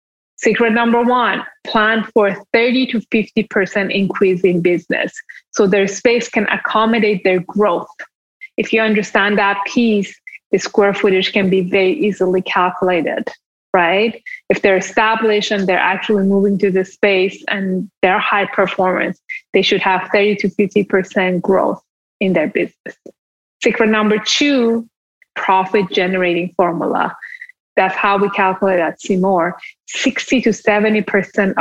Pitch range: 190-220 Hz